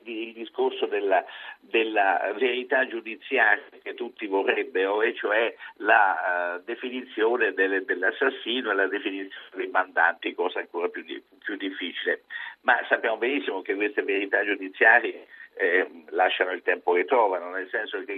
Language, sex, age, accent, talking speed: Italian, male, 50-69, native, 145 wpm